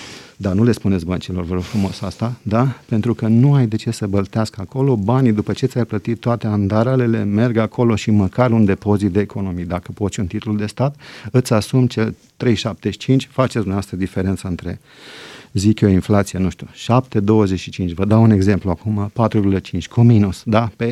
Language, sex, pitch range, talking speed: Romanian, male, 100-120 Hz, 185 wpm